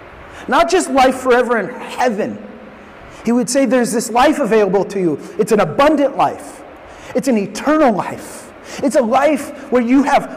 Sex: male